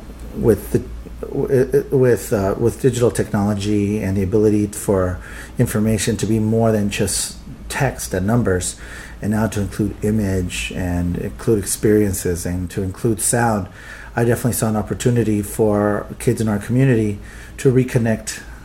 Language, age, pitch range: English, 40-59, 100-120 Hz